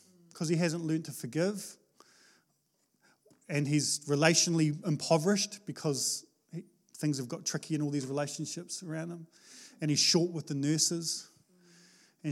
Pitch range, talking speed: 150-190 Hz, 135 wpm